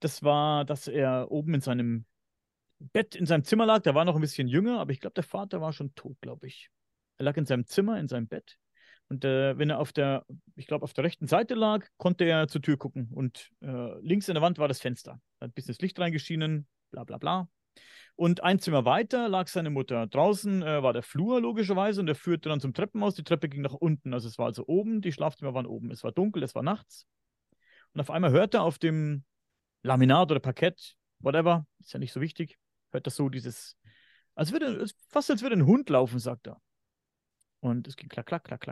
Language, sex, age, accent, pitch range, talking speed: German, male, 40-59, German, 130-175 Hz, 230 wpm